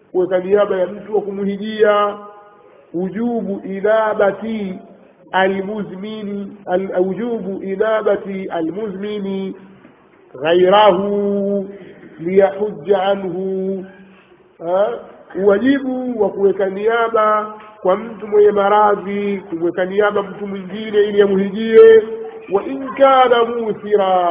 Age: 50-69